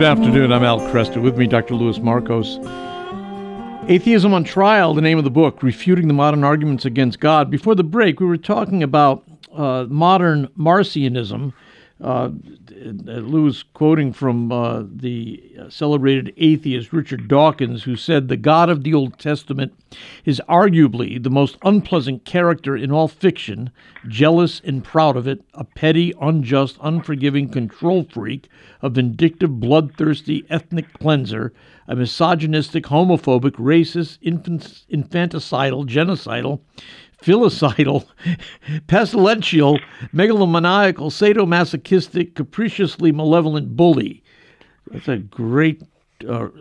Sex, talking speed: male, 125 wpm